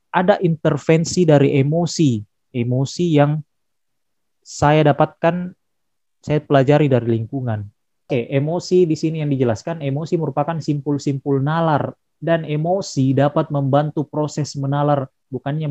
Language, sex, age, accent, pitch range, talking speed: Indonesian, male, 20-39, native, 135-175 Hz, 110 wpm